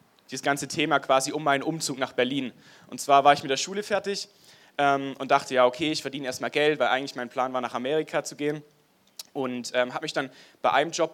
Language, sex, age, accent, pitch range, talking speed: German, male, 20-39, German, 130-160 Hz, 230 wpm